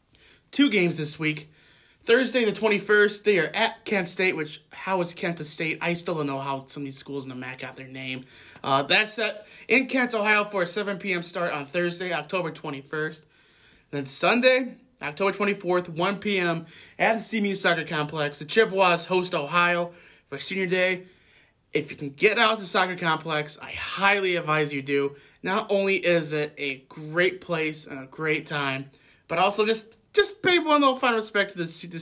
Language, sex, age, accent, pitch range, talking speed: English, male, 20-39, American, 150-210 Hz, 195 wpm